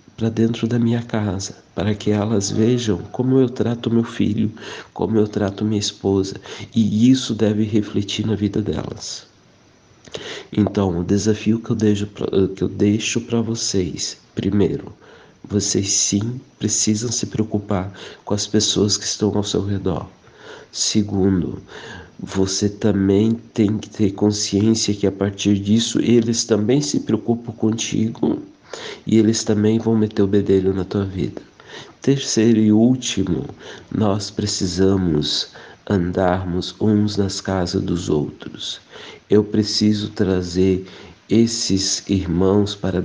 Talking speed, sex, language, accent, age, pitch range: 130 wpm, male, Portuguese, Brazilian, 50-69, 95-110 Hz